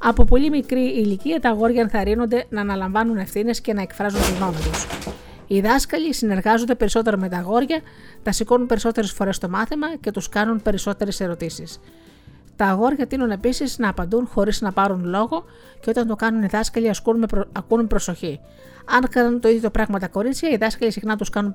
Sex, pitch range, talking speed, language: female, 195-235 Hz, 180 wpm, Greek